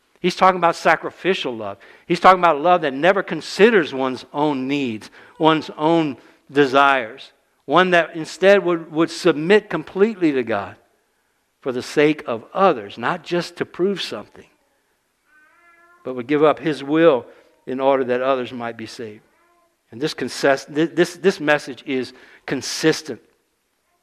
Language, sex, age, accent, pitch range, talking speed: English, male, 60-79, American, 125-175 Hz, 145 wpm